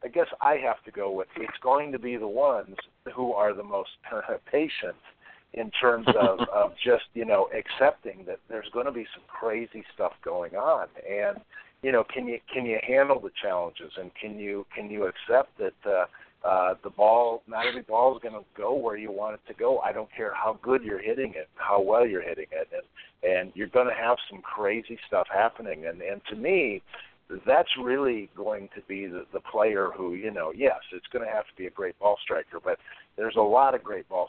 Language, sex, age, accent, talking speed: English, male, 50-69, American, 220 wpm